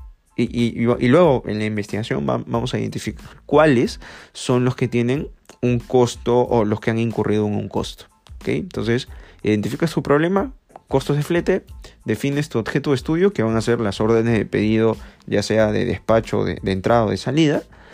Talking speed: 185 wpm